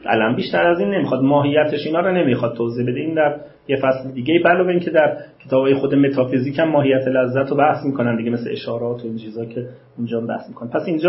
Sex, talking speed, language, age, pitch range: male, 210 wpm, Persian, 40-59, 130-170 Hz